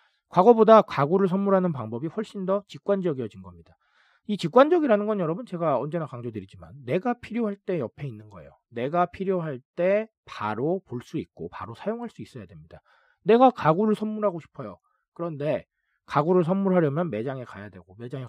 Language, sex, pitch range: Korean, male, 140-210 Hz